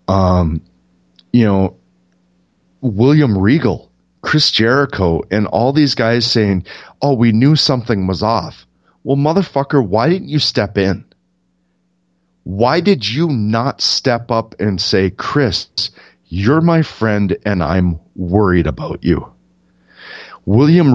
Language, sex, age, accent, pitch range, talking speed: English, male, 30-49, American, 90-130 Hz, 125 wpm